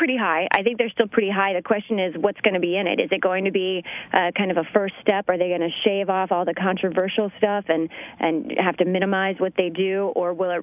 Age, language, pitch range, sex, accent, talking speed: 30-49, English, 180-215 Hz, female, American, 275 wpm